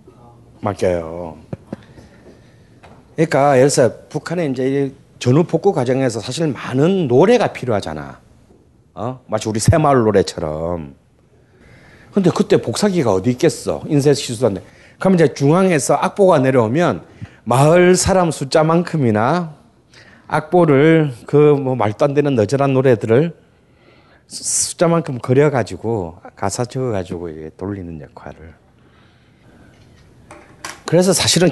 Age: 40-59